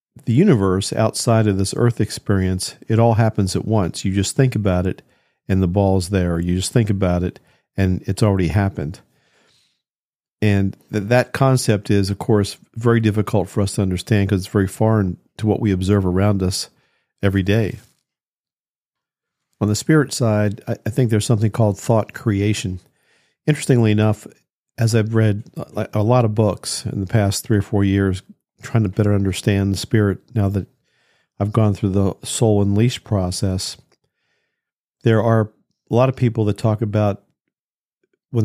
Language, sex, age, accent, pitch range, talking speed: English, male, 50-69, American, 100-115 Hz, 165 wpm